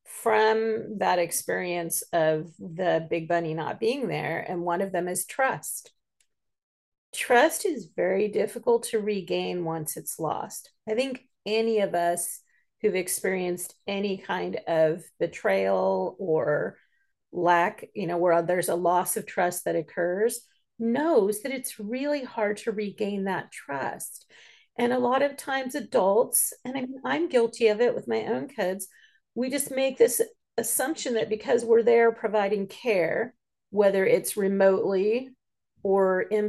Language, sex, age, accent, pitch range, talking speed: English, female, 40-59, American, 180-235 Hz, 145 wpm